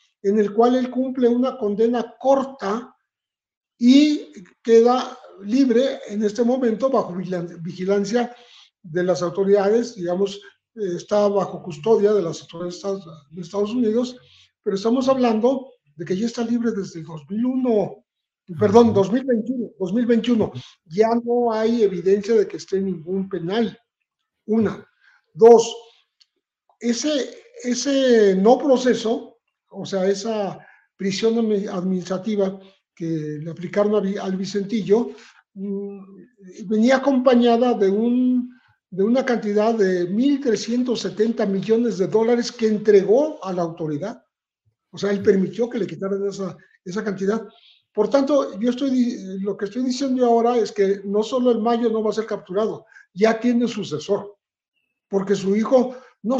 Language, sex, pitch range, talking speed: Spanish, male, 195-240 Hz, 130 wpm